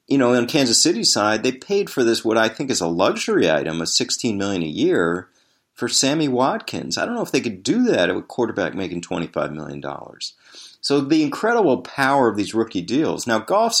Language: English